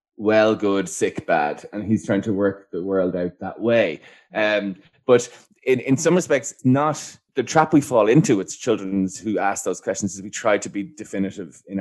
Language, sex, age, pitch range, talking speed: English, male, 20-39, 95-120 Hz, 200 wpm